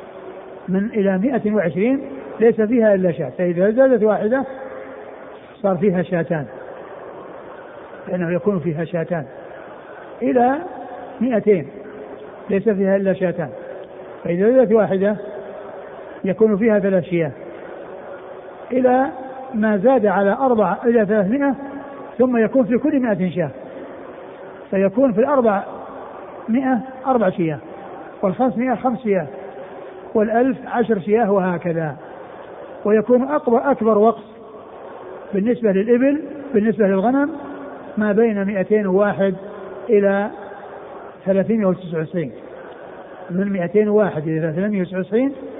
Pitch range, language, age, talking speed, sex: 190-245 Hz, Arabic, 60-79, 100 wpm, male